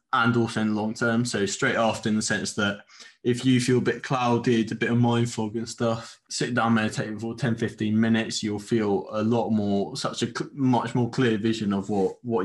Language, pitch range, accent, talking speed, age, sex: English, 110-125 Hz, British, 230 wpm, 20-39, male